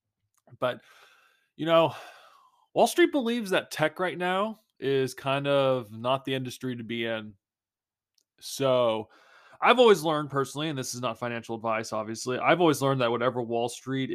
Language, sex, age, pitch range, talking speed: English, male, 20-39, 120-155 Hz, 160 wpm